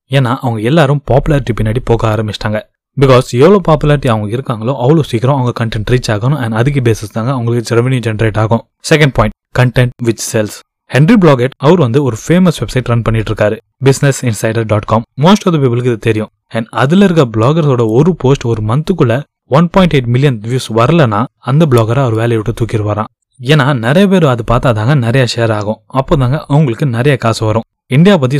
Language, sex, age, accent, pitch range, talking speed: Tamil, male, 20-39, native, 115-145 Hz, 110 wpm